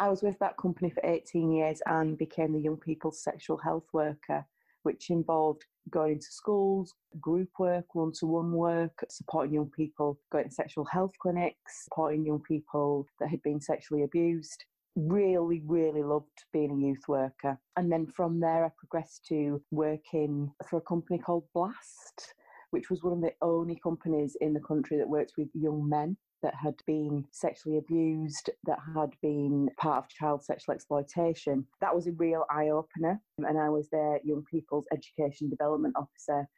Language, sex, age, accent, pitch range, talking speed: English, female, 30-49, British, 145-165 Hz, 170 wpm